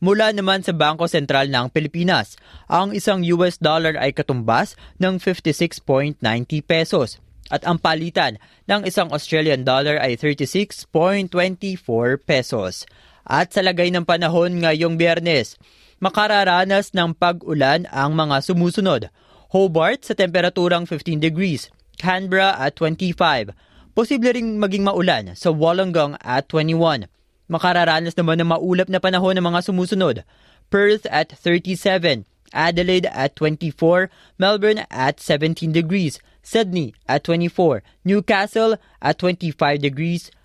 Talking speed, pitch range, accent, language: 120 wpm, 150-185 Hz, native, Filipino